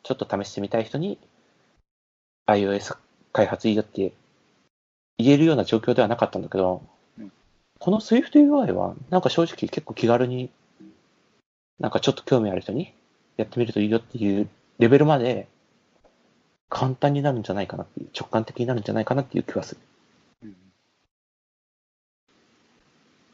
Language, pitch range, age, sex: Japanese, 100-140 Hz, 30-49, male